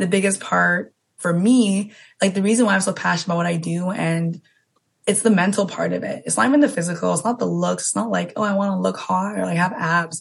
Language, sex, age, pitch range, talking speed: English, female, 20-39, 165-200 Hz, 265 wpm